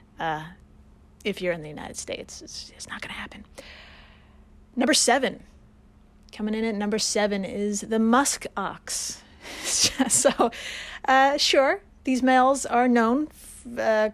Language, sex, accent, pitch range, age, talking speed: English, female, American, 195-245 Hz, 30-49, 135 wpm